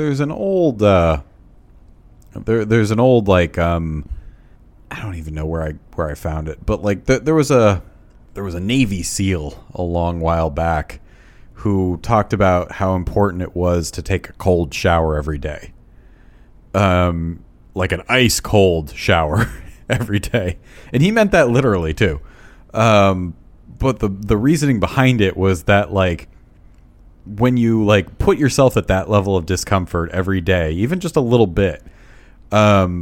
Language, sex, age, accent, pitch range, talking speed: English, male, 30-49, American, 85-120 Hz, 165 wpm